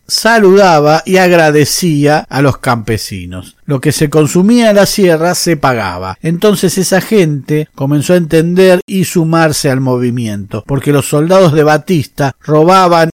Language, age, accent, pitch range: Spanish, 50-69, Argentinian, 140-175 Hz